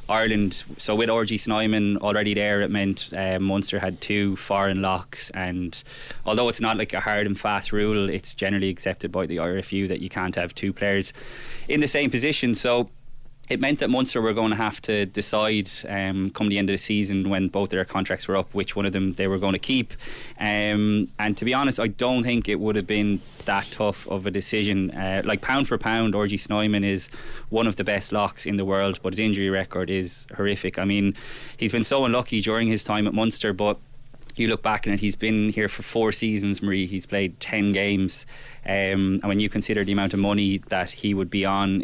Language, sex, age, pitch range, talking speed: English, male, 20-39, 95-110 Hz, 225 wpm